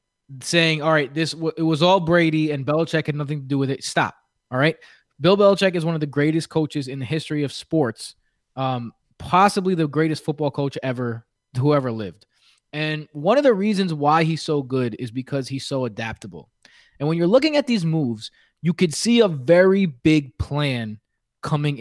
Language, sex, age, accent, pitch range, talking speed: English, male, 20-39, American, 135-170 Hz, 195 wpm